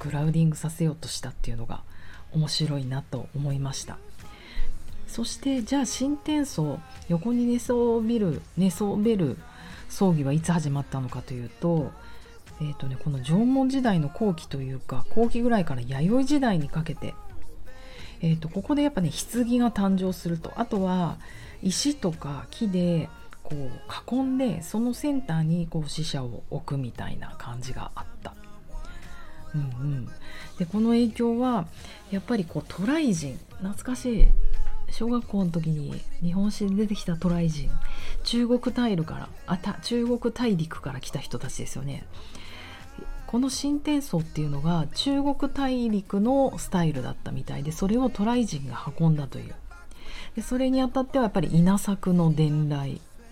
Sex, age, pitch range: female, 40-59, 145-235 Hz